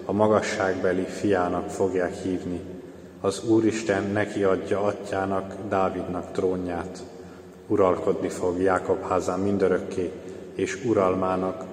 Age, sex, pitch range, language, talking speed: 30-49, male, 90-100 Hz, Hungarian, 95 wpm